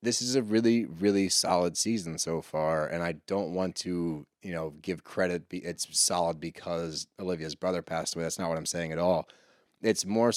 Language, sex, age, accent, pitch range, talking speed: English, male, 30-49, American, 85-105 Hz, 195 wpm